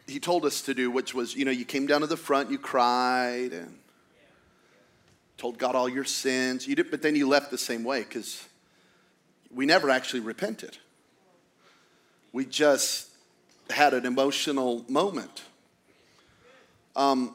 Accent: American